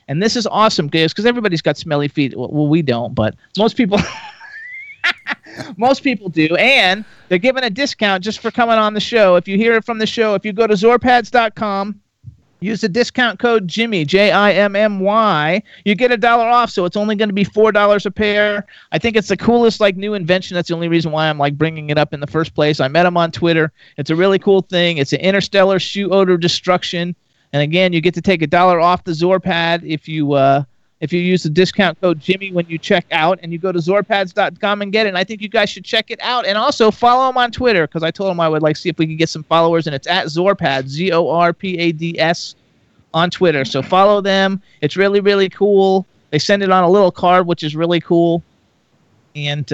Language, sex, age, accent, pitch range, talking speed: English, male, 40-59, American, 165-210 Hz, 235 wpm